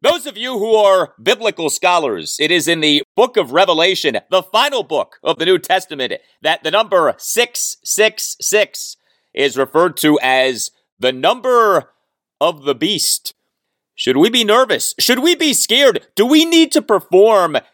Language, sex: English, male